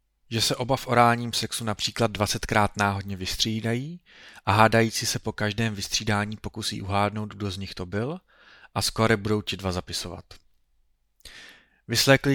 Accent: native